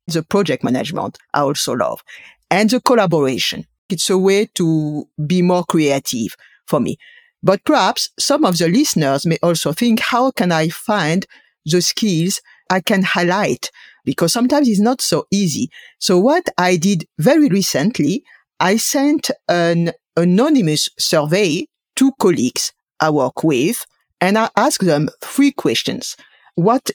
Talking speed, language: 145 wpm, English